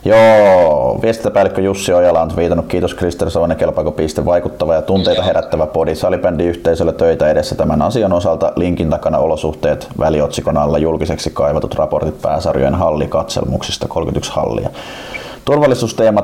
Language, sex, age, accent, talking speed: Finnish, male, 30-49, native, 125 wpm